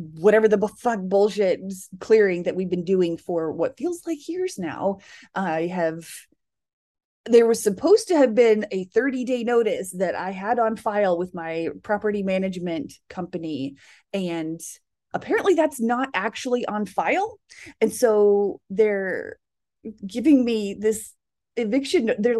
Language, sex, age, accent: English, female, 30-49, American